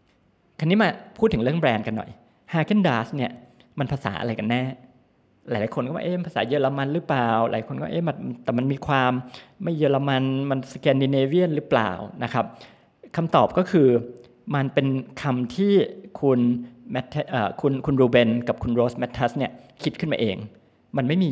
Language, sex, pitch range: Thai, male, 115-145 Hz